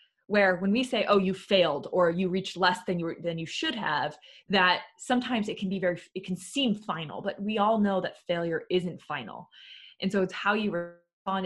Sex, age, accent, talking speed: female, 20-39, American, 220 wpm